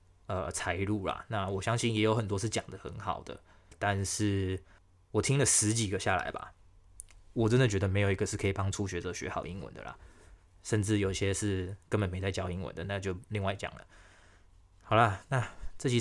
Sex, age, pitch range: male, 20-39, 90-105 Hz